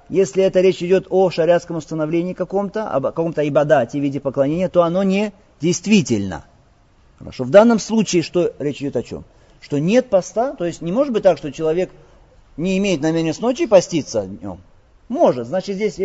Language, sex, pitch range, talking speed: Russian, male, 150-195 Hz, 185 wpm